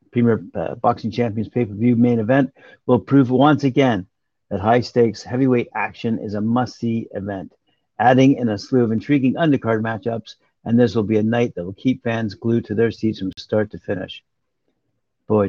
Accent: American